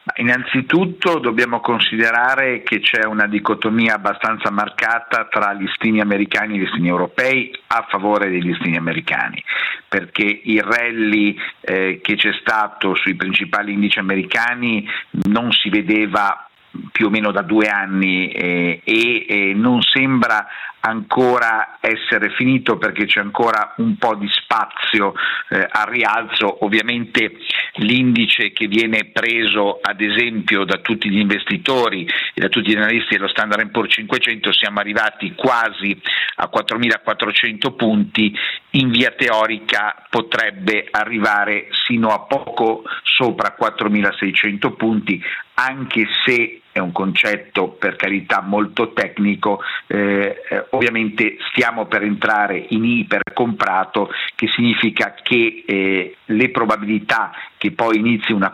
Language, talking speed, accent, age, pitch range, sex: Italian, 125 wpm, native, 50-69, 100-120 Hz, male